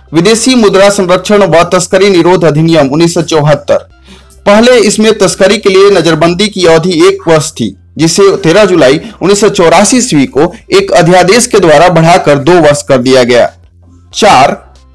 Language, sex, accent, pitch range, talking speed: Hindi, male, native, 145-195 Hz, 145 wpm